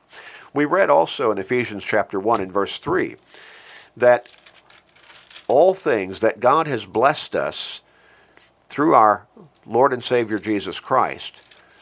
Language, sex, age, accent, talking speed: English, male, 50-69, American, 120 wpm